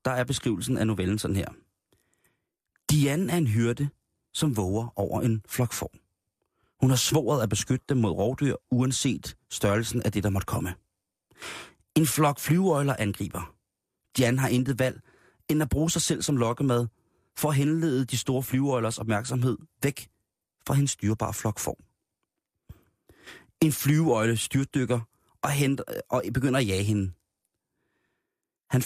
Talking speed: 140 wpm